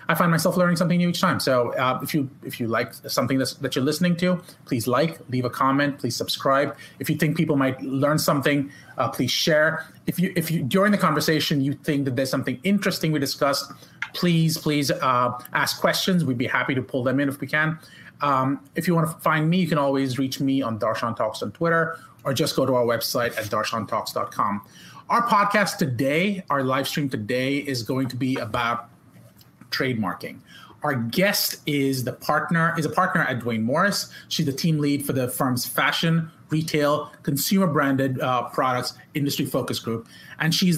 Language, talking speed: English, 195 wpm